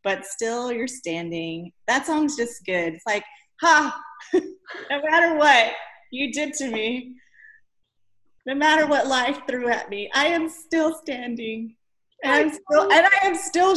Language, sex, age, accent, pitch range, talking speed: English, female, 30-49, American, 185-285 Hz, 150 wpm